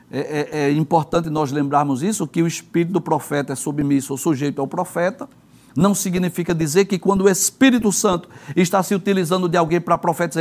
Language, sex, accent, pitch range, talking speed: Portuguese, male, Brazilian, 165-215 Hz, 195 wpm